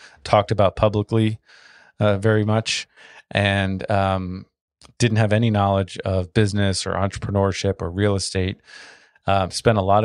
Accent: American